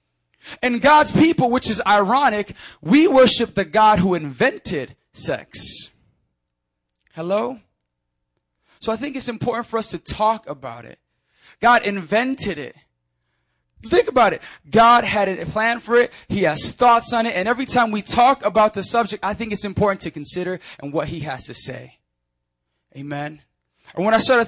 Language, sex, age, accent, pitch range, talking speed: English, male, 20-39, American, 145-240 Hz, 165 wpm